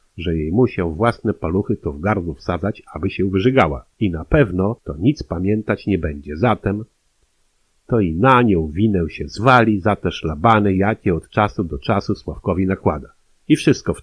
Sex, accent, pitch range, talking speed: male, native, 85-110 Hz, 175 wpm